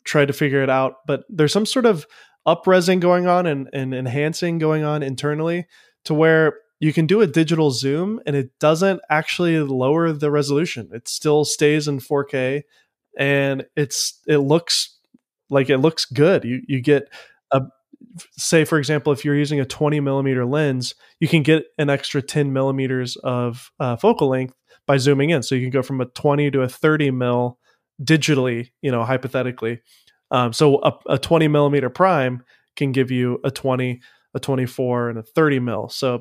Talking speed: 180 wpm